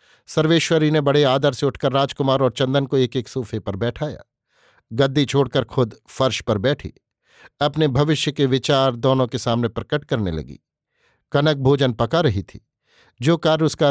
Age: 50-69